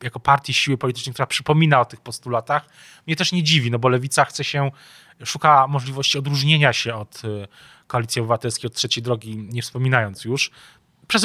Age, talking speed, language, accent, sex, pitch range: 20-39, 170 wpm, Polish, native, male, 115-135 Hz